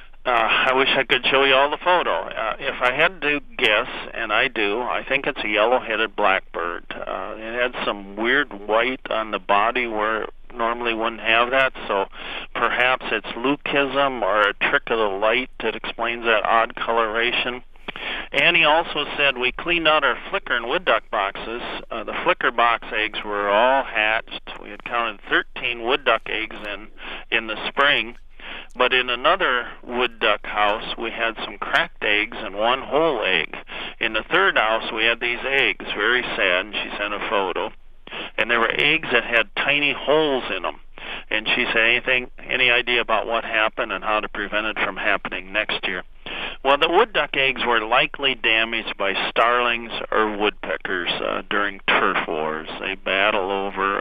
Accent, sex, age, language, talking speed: American, male, 50-69, English, 180 wpm